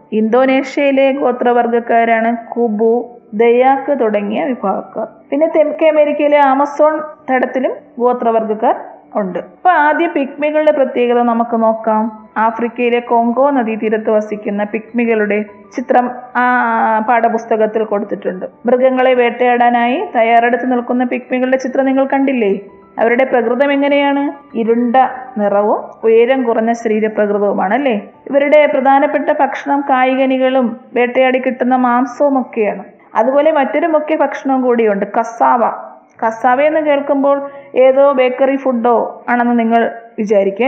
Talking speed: 100 wpm